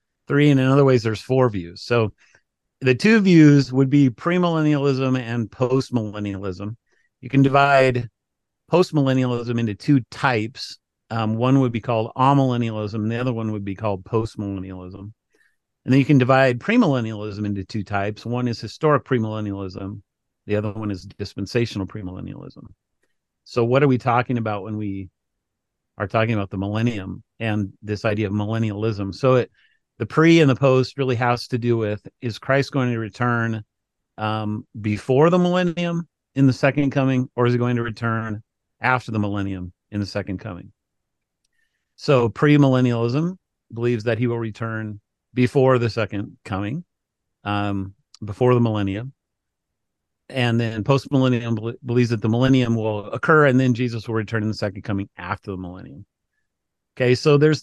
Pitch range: 105-130 Hz